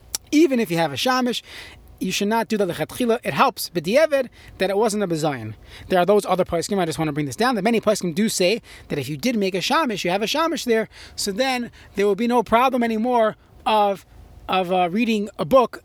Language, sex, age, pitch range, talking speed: English, male, 30-49, 175-225 Hz, 245 wpm